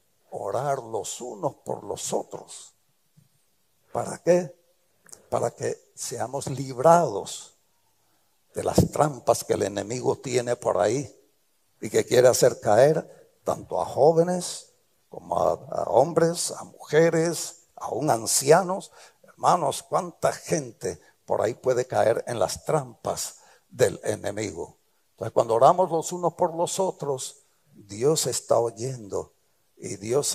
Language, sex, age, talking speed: English, male, 60-79, 125 wpm